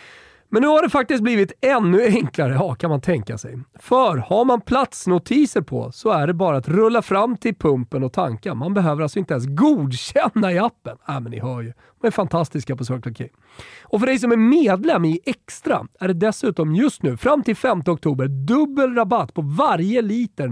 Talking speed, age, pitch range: 210 wpm, 40-59, 140-225 Hz